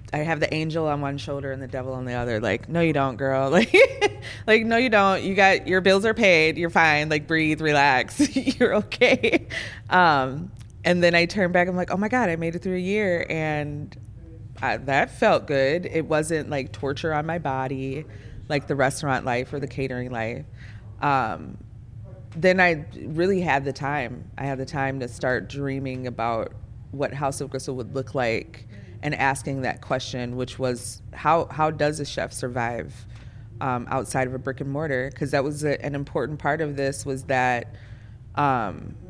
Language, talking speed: English, 195 wpm